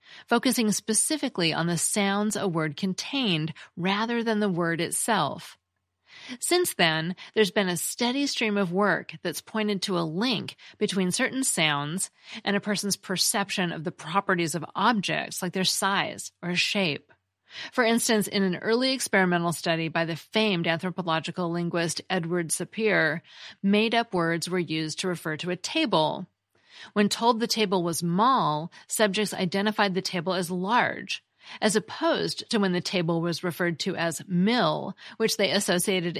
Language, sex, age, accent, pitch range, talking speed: English, female, 40-59, American, 170-215 Hz, 155 wpm